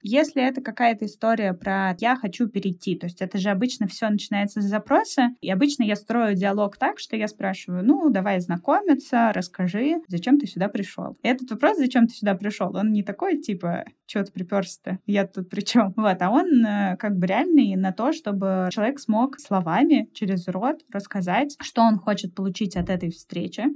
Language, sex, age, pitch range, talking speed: Russian, female, 10-29, 180-230 Hz, 180 wpm